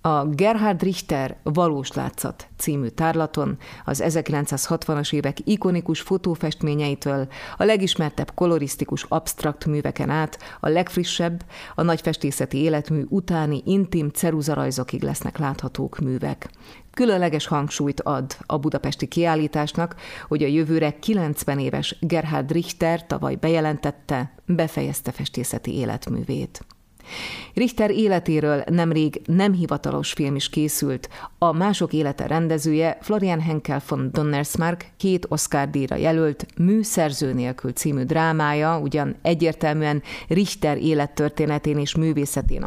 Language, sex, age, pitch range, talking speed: Hungarian, female, 30-49, 145-170 Hz, 110 wpm